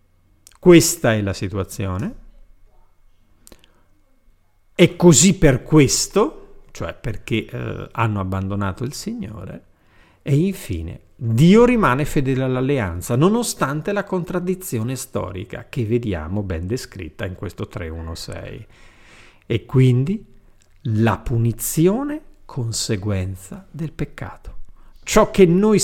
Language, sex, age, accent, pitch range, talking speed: Italian, male, 50-69, native, 95-145 Hz, 100 wpm